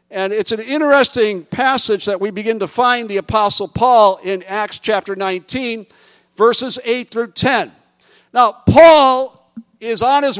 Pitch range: 195-235 Hz